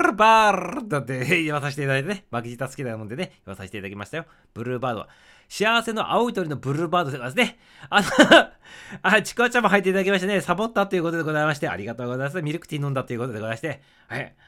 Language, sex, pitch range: Japanese, male, 140-205 Hz